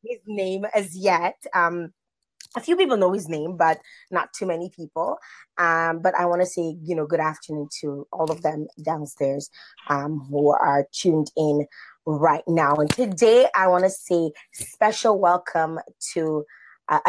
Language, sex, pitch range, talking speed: English, female, 155-195 Hz, 170 wpm